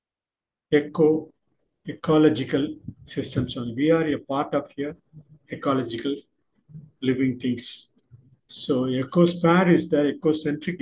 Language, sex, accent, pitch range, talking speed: Tamil, male, native, 130-155 Hz, 90 wpm